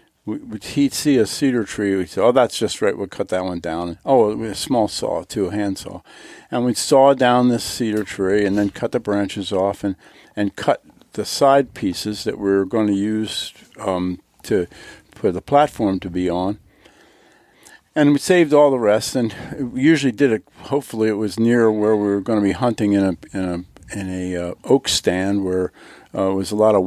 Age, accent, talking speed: 50-69, American, 215 wpm